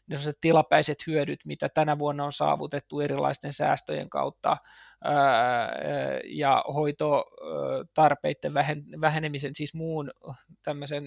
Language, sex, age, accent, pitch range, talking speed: Finnish, male, 20-39, native, 145-155 Hz, 90 wpm